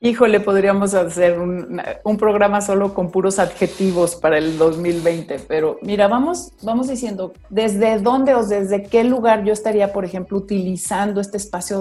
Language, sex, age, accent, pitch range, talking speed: Spanish, female, 40-59, Mexican, 170-215 Hz, 160 wpm